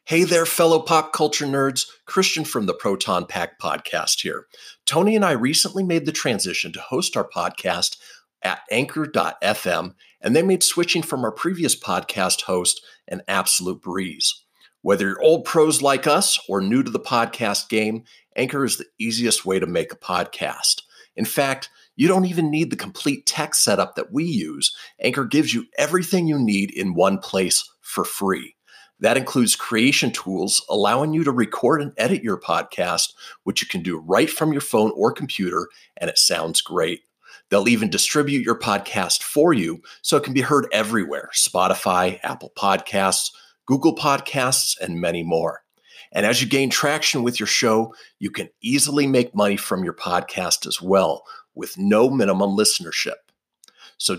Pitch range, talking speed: 110-160 Hz, 170 wpm